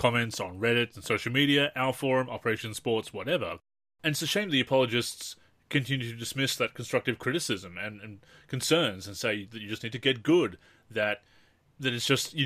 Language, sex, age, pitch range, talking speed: English, male, 20-39, 110-140 Hz, 195 wpm